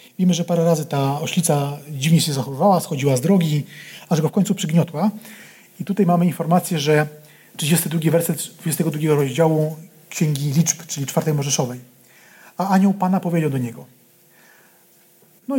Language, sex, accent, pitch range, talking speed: Polish, male, native, 150-185 Hz, 145 wpm